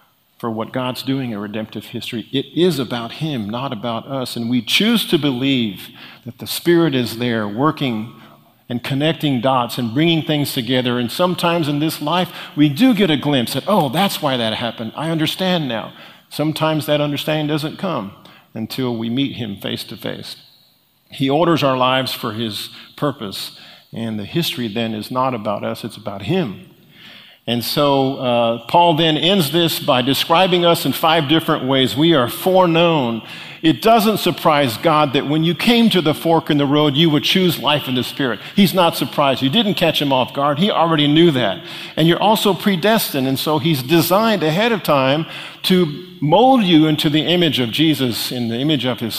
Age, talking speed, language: 50-69, 190 wpm, English